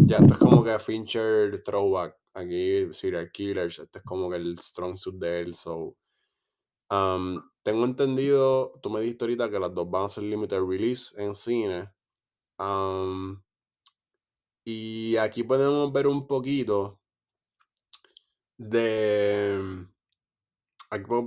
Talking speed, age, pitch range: 135 wpm, 20-39, 95-120 Hz